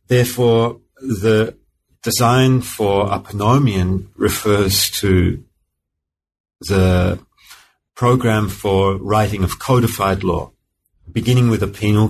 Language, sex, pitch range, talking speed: English, male, 95-115 Hz, 95 wpm